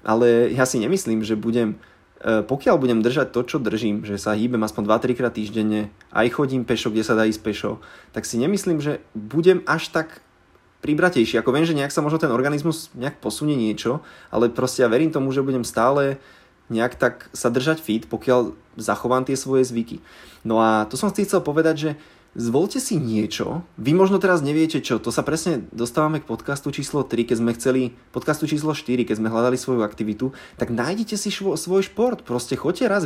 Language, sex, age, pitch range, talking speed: Slovak, male, 20-39, 115-140 Hz, 195 wpm